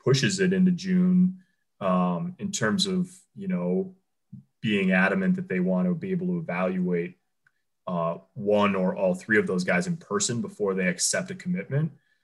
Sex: male